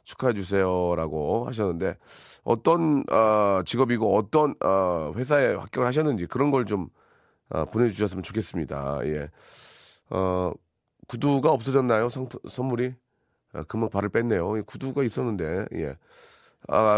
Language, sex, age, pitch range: Korean, male, 30-49, 100-145 Hz